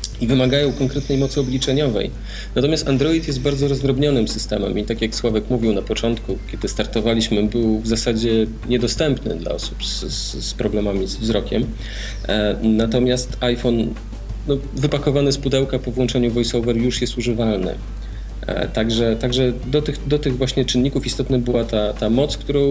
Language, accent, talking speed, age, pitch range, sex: Polish, native, 155 wpm, 40-59, 110-130 Hz, male